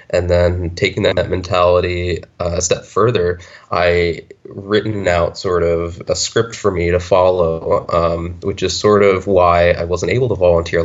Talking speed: 165 wpm